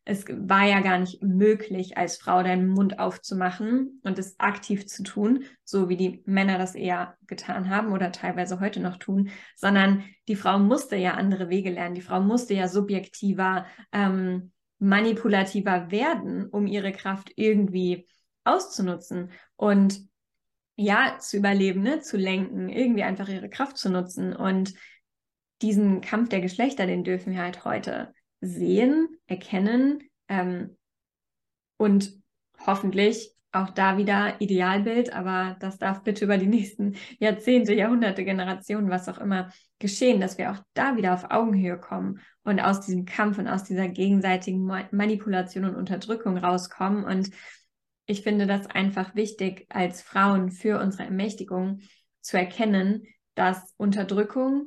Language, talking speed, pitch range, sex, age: German, 145 wpm, 185-210 Hz, female, 10-29